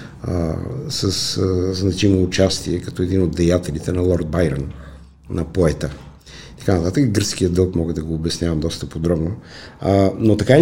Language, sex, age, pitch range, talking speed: Bulgarian, male, 50-69, 95-130 Hz, 155 wpm